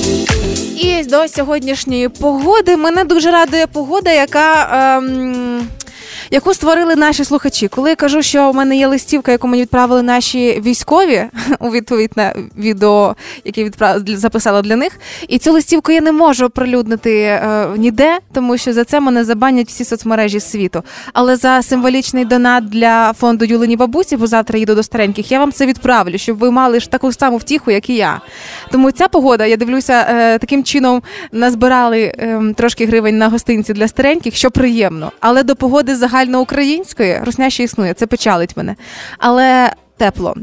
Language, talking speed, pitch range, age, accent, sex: Ukrainian, 160 wpm, 225-275 Hz, 20-39, native, female